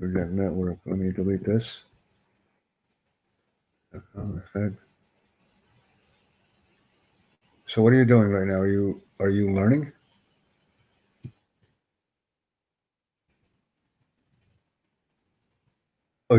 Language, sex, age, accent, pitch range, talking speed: English, male, 60-79, American, 95-115 Hz, 65 wpm